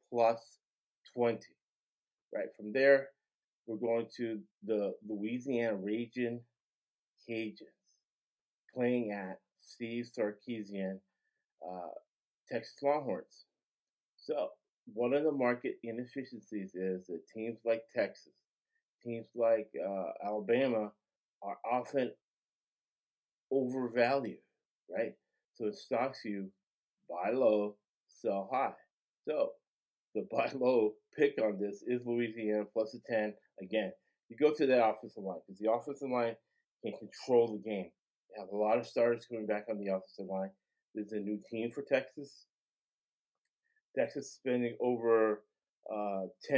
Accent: American